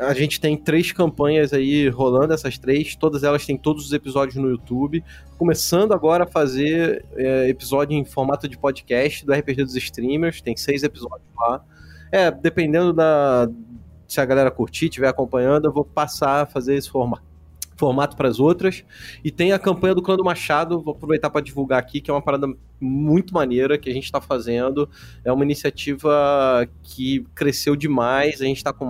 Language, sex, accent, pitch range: Portuguese, male, Brazilian, 130-150 Hz